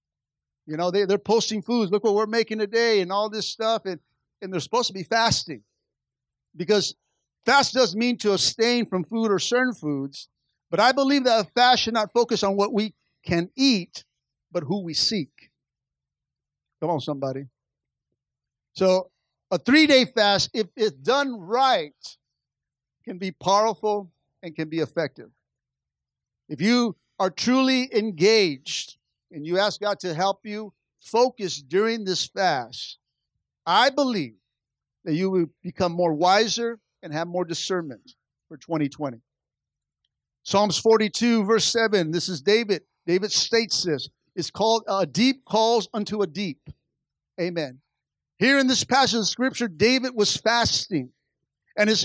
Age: 50-69